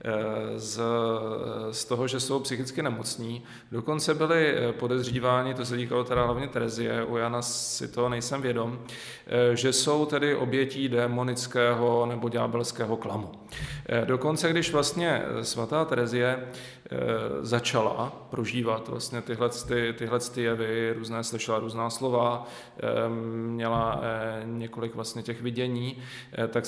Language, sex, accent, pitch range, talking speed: Czech, male, native, 115-135 Hz, 115 wpm